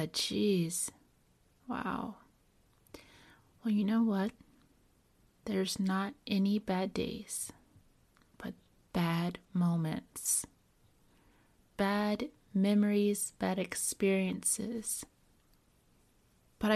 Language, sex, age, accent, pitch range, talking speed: English, female, 30-49, American, 185-230 Hz, 70 wpm